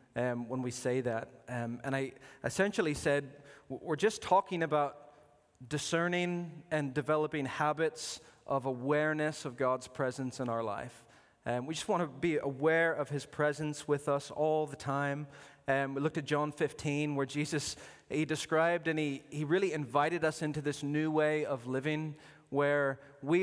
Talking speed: 165 wpm